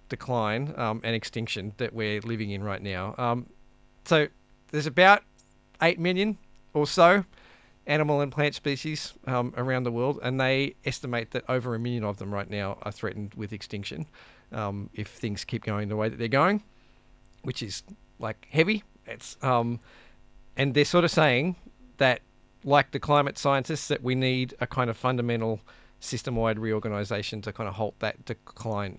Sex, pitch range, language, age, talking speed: male, 115-145 Hz, English, 40-59, 170 wpm